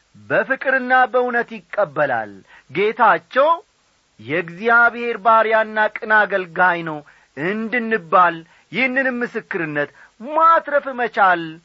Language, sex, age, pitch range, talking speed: Amharic, male, 40-59, 160-235 Hz, 65 wpm